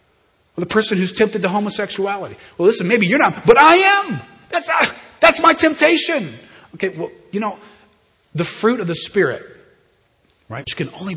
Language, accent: English, American